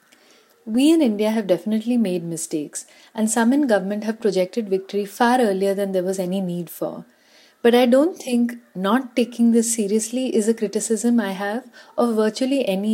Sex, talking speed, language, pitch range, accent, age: female, 175 wpm, English, 190-245 Hz, Indian, 30-49